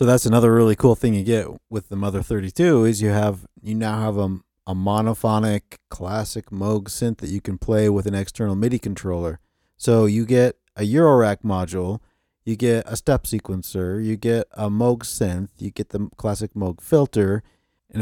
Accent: American